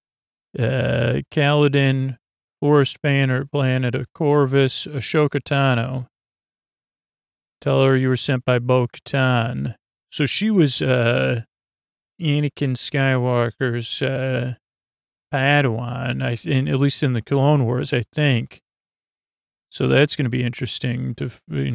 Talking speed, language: 120 wpm, English